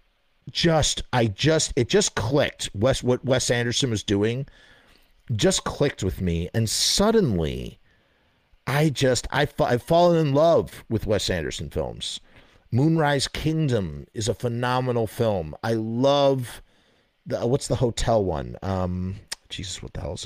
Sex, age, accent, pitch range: male, 50-69, American, 100-140 Hz